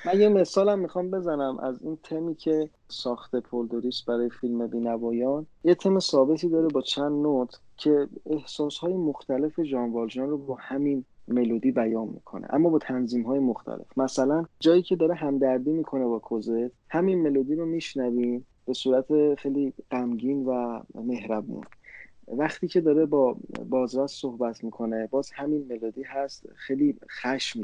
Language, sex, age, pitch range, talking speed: Persian, male, 30-49, 120-150 Hz, 145 wpm